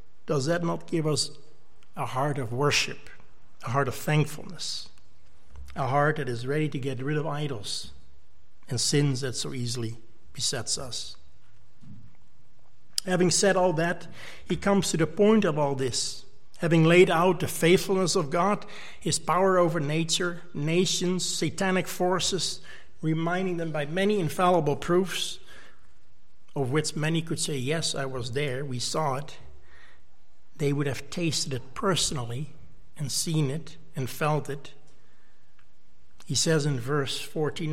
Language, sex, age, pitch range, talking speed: English, male, 60-79, 135-175 Hz, 145 wpm